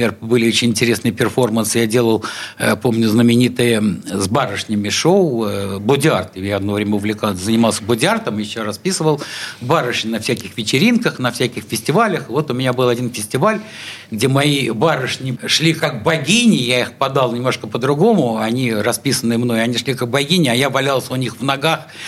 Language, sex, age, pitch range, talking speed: Russian, male, 60-79, 125-175 Hz, 160 wpm